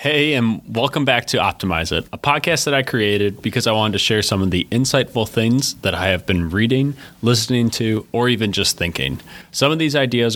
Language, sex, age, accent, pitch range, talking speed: English, male, 30-49, American, 90-115 Hz, 215 wpm